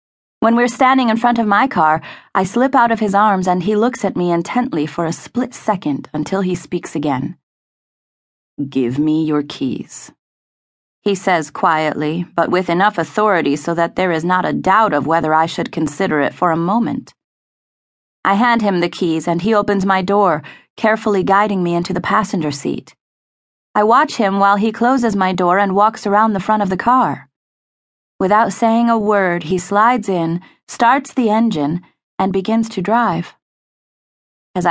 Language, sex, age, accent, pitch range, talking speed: English, female, 30-49, American, 175-225 Hz, 180 wpm